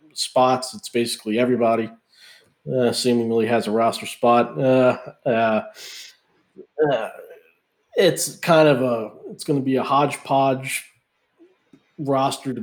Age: 40-59